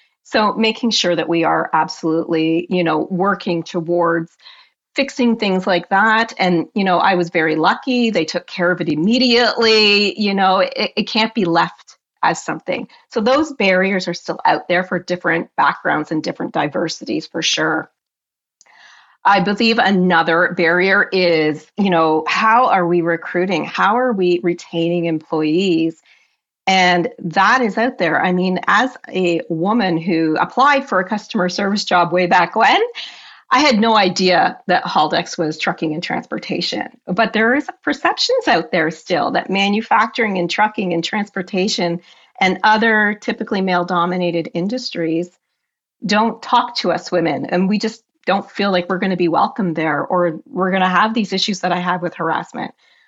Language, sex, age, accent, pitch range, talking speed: English, female, 40-59, American, 170-220 Hz, 165 wpm